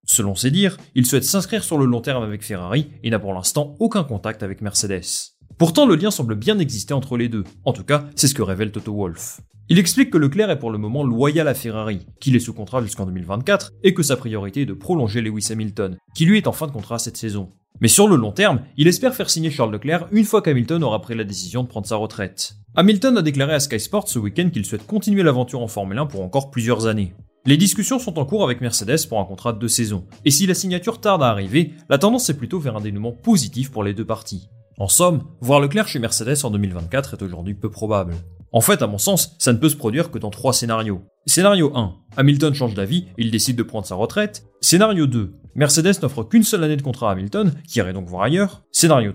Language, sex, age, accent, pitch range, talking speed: French, male, 30-49, French, 110-160 Hz, 245 wpm